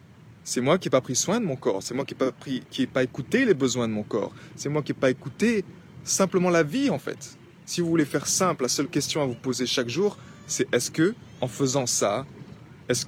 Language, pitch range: French, 140-185 Hz